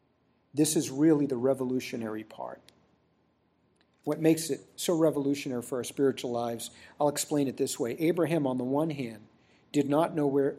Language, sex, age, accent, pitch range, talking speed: English, male, 50-69, American, 135-165 Hz, 165 wpm